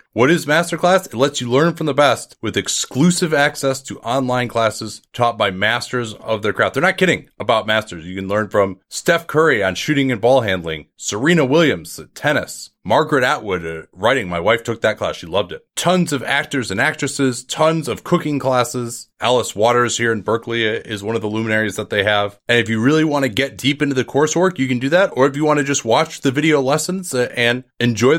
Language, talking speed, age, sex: English, 220 wpm, 30-49, male